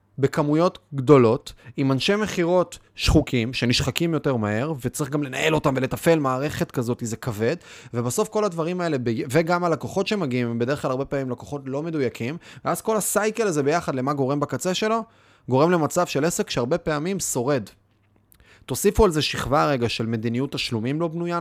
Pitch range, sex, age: 110-160 Hz, male, 20-39